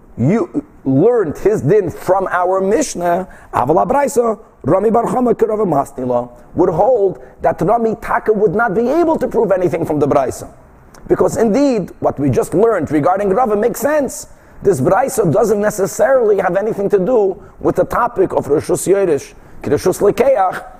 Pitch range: 165-235 Hz